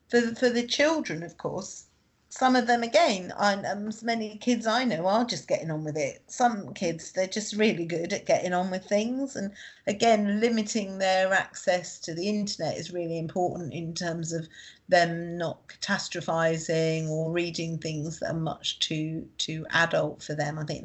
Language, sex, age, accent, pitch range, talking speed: English, female, 40-59, British, 165-210 Hz, 185 wpm